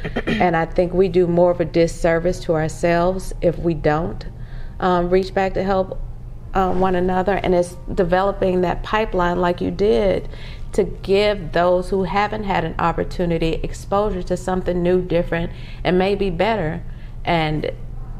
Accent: American